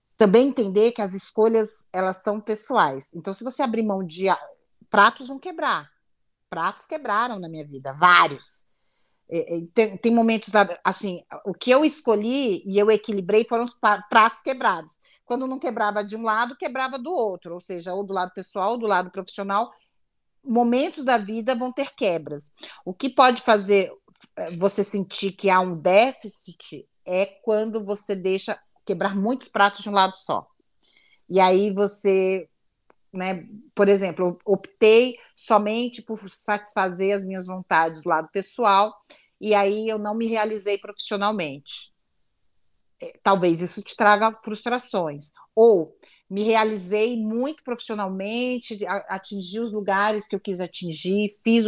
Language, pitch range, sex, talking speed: Portuguese, 190-230 Hz, female, 145 wpm